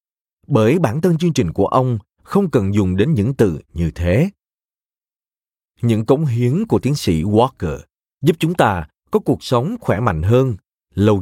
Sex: male